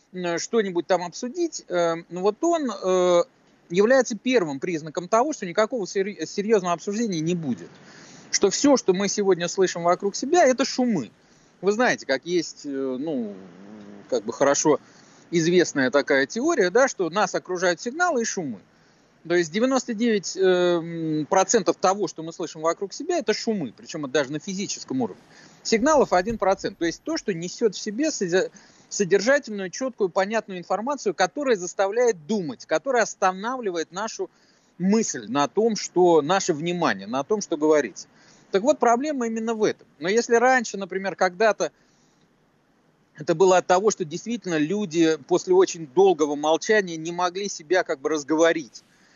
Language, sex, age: Russian, male, 30-49